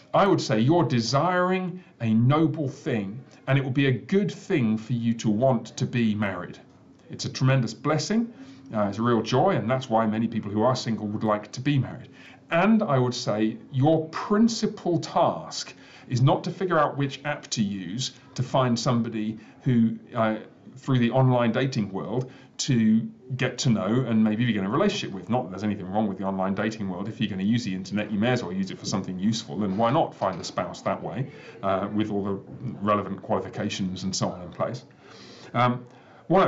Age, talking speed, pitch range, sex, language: 40-59, 210 wpm, 110-140 Hz, male, English